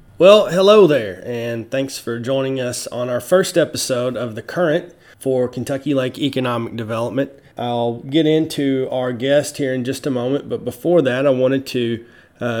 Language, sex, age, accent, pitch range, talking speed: English, male, 30-49, American, 120-135 Hz, 175 wpm